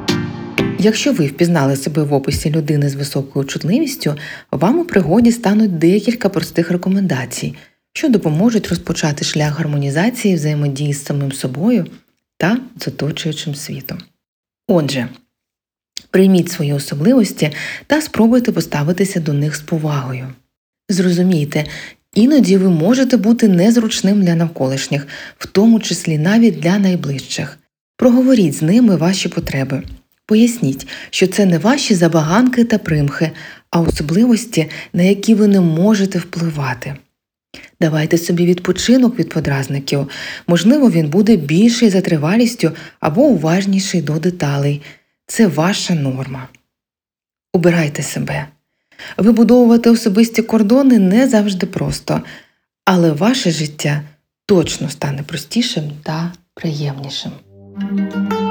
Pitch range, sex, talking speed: 150-215 Hz, female, 110 wpm